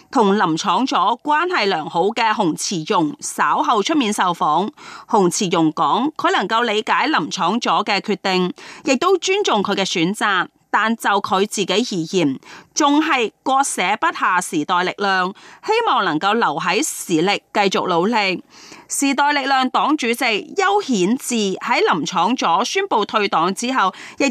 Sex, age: female, 30-49